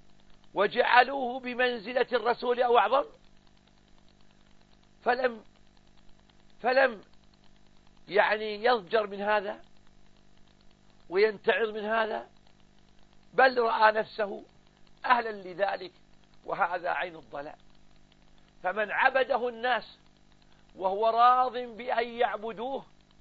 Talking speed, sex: 75 wpm, male